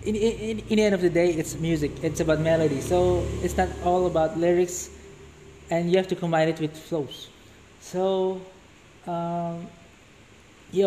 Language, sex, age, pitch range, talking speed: Indonesian, male, 20-39, 155-185 Hz, 165 wpm